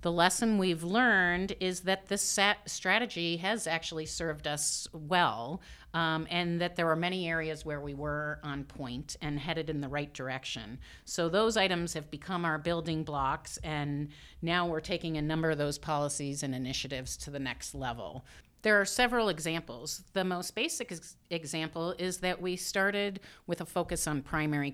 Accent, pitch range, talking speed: American, 140-170 Hz, 175 wpm